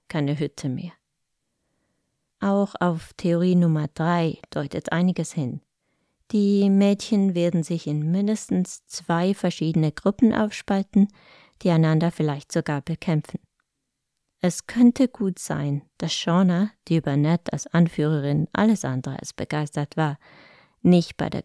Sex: female